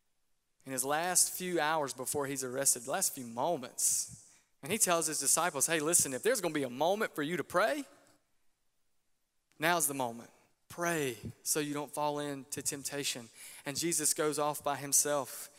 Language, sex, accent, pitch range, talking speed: English, male, American, 140-180 Hz, 170 wpm